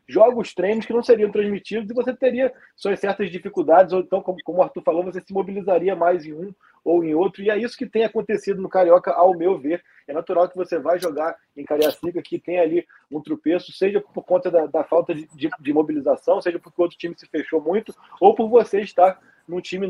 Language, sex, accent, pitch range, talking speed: Portuguese, male, Brazilian, 165-210 Hz, 230 wpm